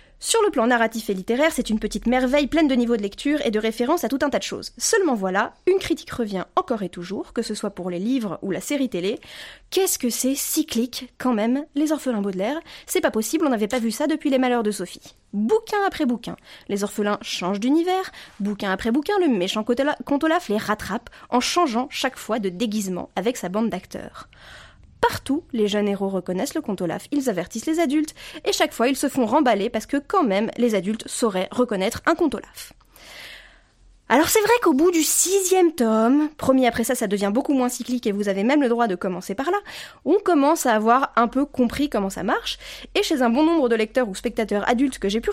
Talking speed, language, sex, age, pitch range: 220 wpm, French, female, 20-39, 215-295 Hz